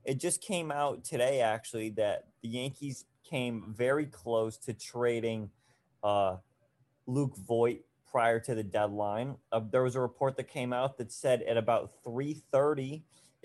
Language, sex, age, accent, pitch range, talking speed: English, male, 30-49, American, 120-140 Hz, 150 wpm